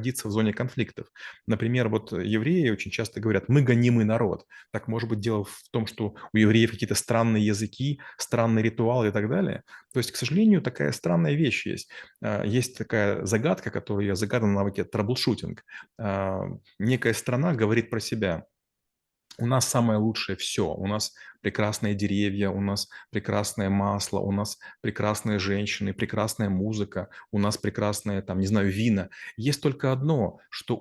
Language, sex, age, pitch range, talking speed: Russian, male, 30-49, 105-120 Hz, 155 wpm